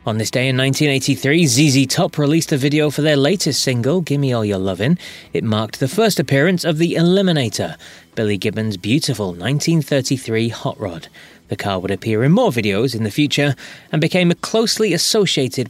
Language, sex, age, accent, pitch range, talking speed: English, male, 30-49, British, 110-165 Hz, 175 wpm